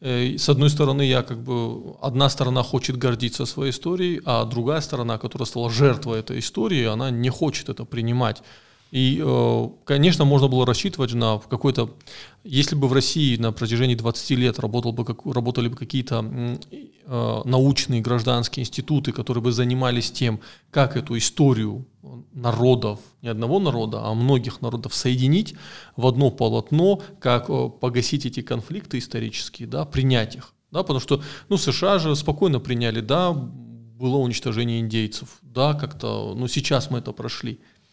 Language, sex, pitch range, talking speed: Russian, male, 115-140 Hz, 135 wpm